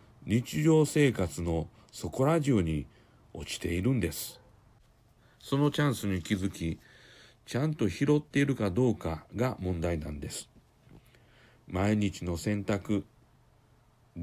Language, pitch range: Japanese, 90-130 Hz